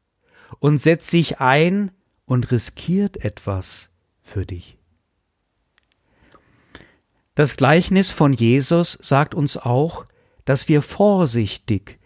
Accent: German